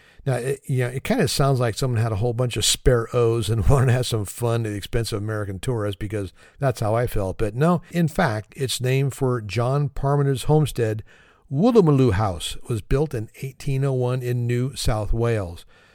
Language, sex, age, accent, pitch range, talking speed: English, male, 50-69, American, 110-140 Hz, 205 wpm